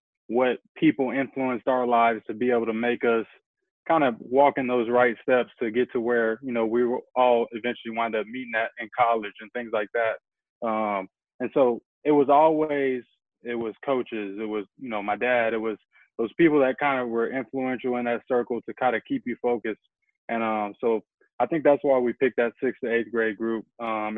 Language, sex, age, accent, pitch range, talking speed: English, male, 20-39, American, 110-125 Hz, 215 wpm